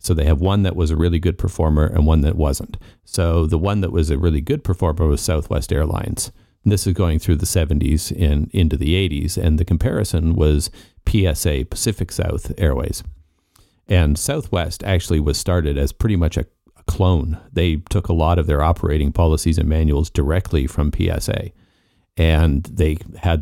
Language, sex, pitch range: English, male, 80-95 Hz